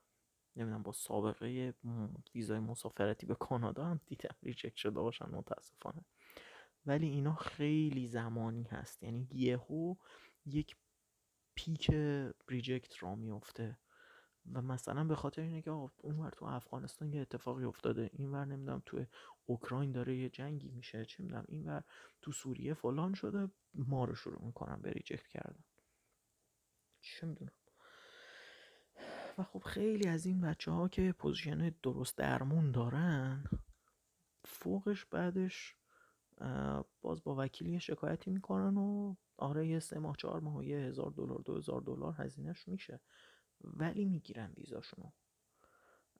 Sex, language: male, Persian